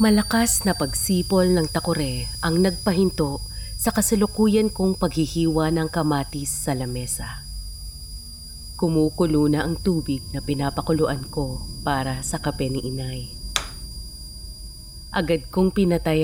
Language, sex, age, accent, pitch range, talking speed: Filipino, female, 30-49, native, 115-175 Hz, 110 wpm